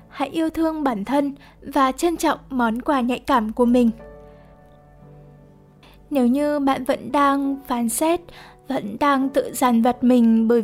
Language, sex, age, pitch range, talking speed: Vietnamese, female, 10-29, 230-285 Hz, 160 wpm